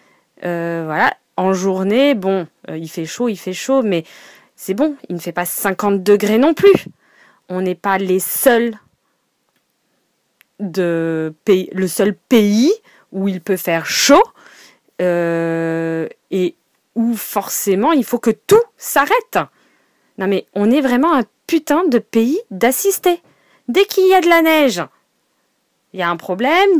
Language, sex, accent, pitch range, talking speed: French, female, French, 185-280 Hz, 145 wpm